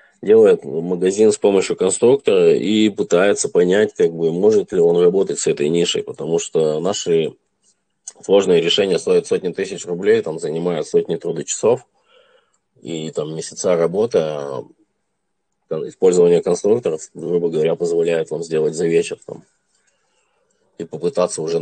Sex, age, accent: male, 20-39, native